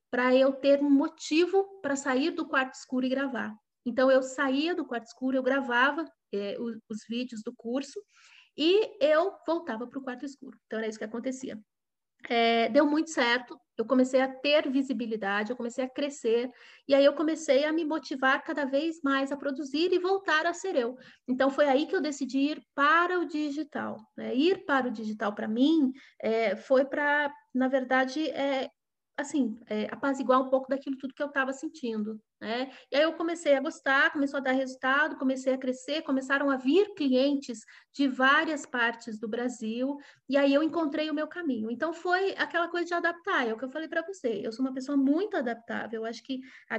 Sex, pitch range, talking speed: female, 245-300 Hz, 190 wpm